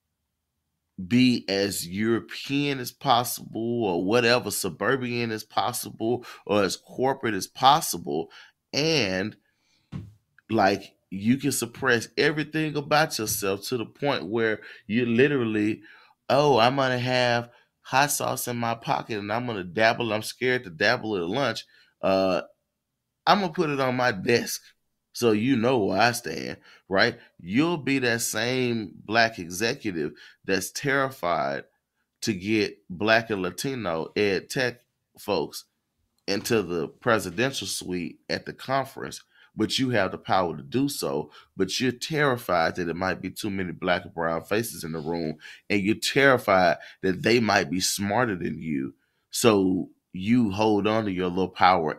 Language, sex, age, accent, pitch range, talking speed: English, male, 30-49, American, 95-125 Hz, 150 wpm